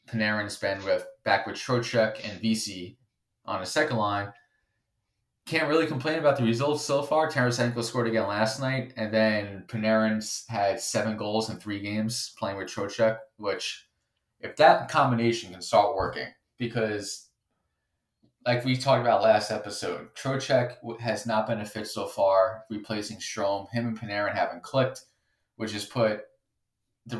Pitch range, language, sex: 105-120 Hz, English, male